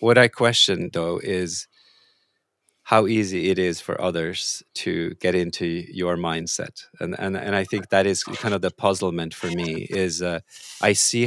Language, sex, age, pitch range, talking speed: English, male, 40-59, 90-105 Hz, 175 wpm